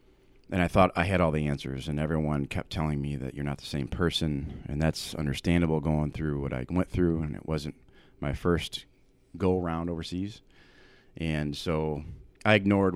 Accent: American